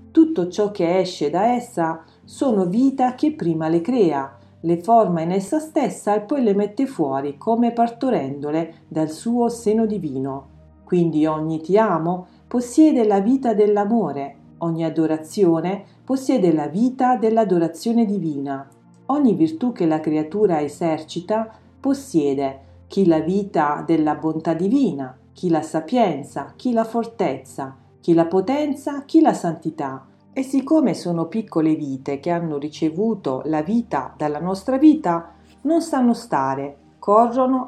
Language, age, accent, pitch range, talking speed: Italian, 40-59, native, 155-230 Hz, 135 wpm